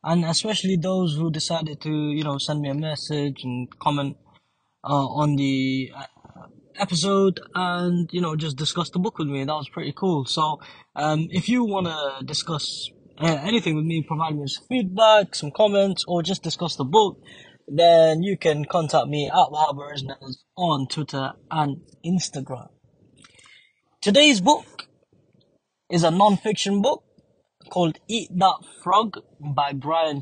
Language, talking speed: English, 150 wpm